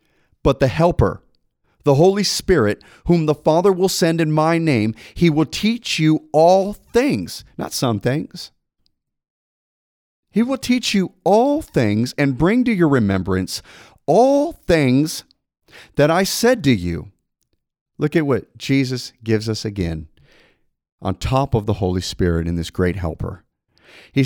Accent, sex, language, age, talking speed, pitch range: American, male, English, 40-59, 145 wpm, 95-160 Hz